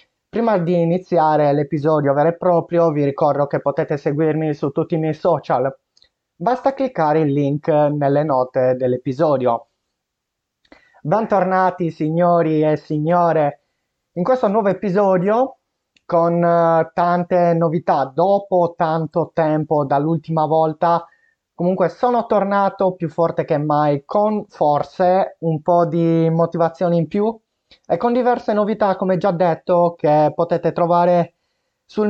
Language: Italian